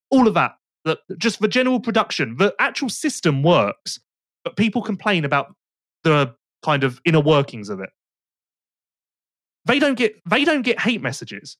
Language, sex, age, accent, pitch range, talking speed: English, male, 30-49, British, 160-235 Hz, 150 wpm